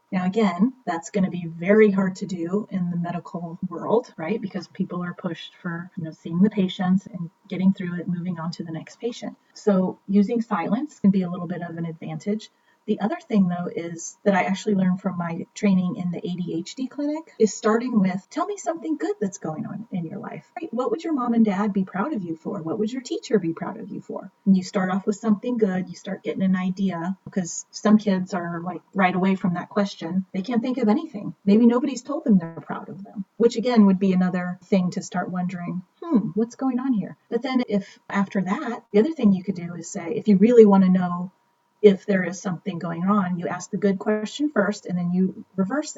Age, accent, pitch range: 30-49, American, 180-225 Hz